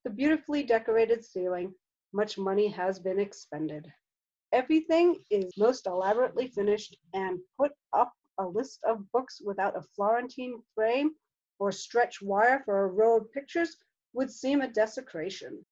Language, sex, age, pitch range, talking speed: English, female, 40-59, 190-250 Hz, 140 wpm